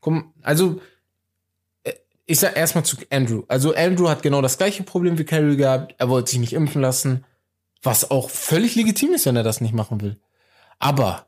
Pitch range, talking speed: 125-160 Hz, 180 wpm